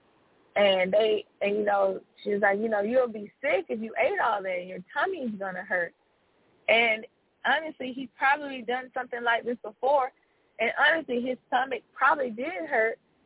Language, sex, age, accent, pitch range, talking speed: English, female, 20-39, American, 200-245 Hz, 175 wpm